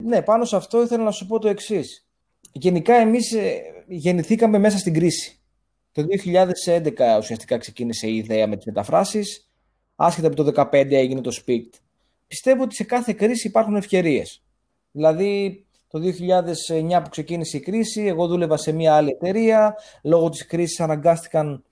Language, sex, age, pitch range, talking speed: Greek, male, 20-39, 150-215 Hz, 155 wpm